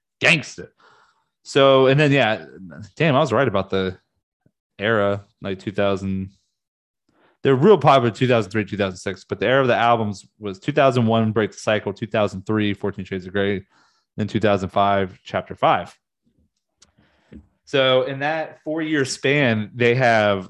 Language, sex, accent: English, male, American